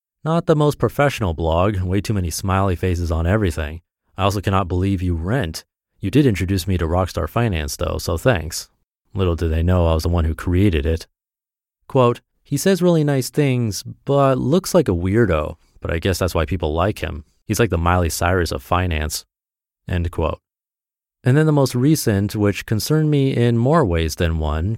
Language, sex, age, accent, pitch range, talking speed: English, male, 30-49, American, 85-120 Hz, 195 wpm